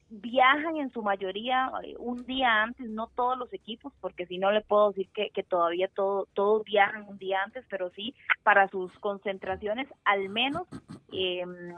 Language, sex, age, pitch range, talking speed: Spanish, female, 20-39, 190-250 Hz, 175 wpm